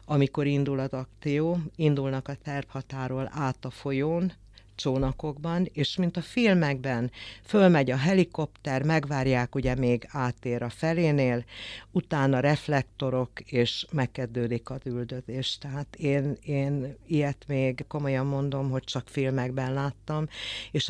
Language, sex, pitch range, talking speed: Hungarian, female, 125-150 Hz, 120 wpm